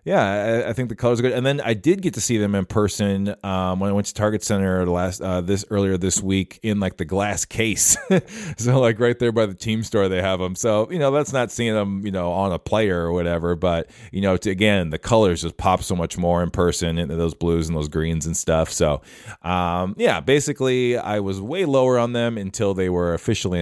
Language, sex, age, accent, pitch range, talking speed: English, male, 30-49, American, 85-105 Hz, 240 wpm